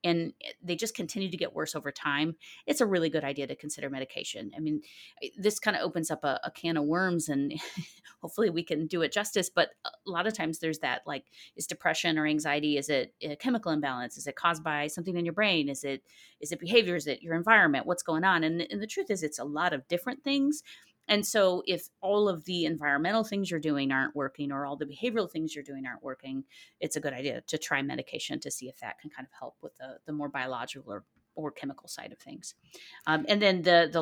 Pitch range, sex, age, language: 150-195 Hz, female, 30-49, English